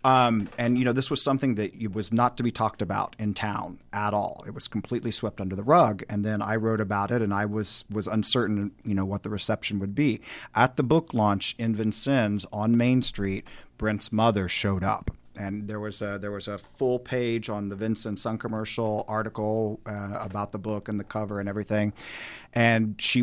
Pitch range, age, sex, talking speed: 100-120 Hz, 40-59, male, 210 wpm